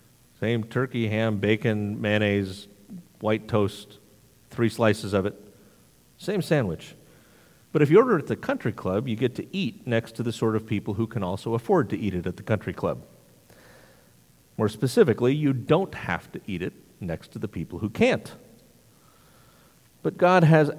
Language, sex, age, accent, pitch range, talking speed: English, male, 40-59, American, 100-135 Hz, 175 wpm